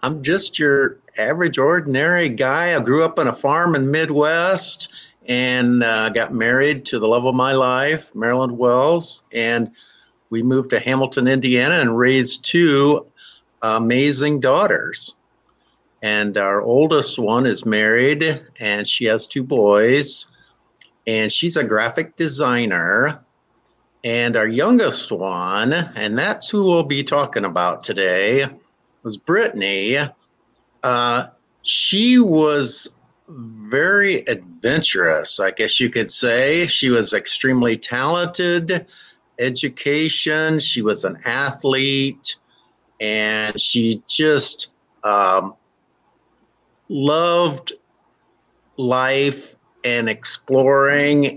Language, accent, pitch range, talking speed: English, American, 115-155 Hz, 110 wpm